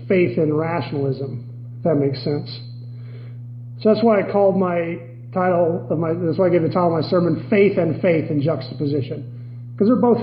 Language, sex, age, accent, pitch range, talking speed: English, male, 40-59, American, 120-185 Hz, 195 wpm